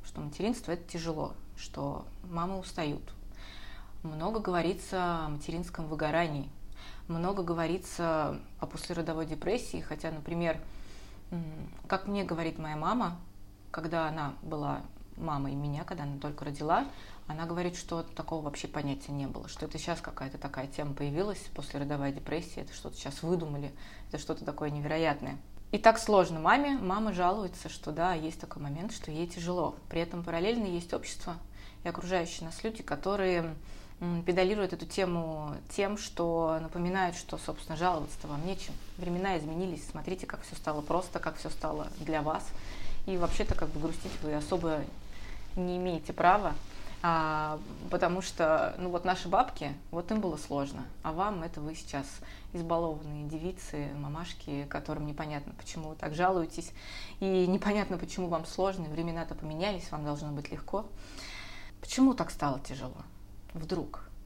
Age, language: 20-39, Russian